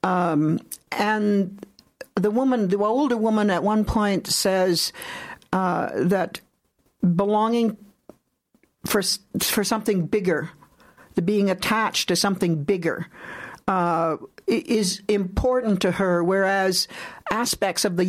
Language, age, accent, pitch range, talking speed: English, 60-79, American, 165-205 Hz, 110 wpm